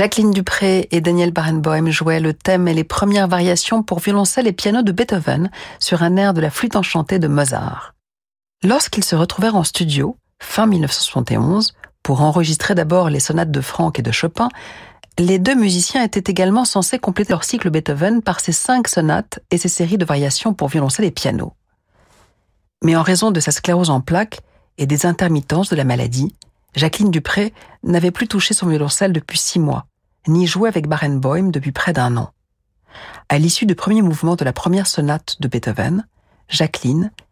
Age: 50-69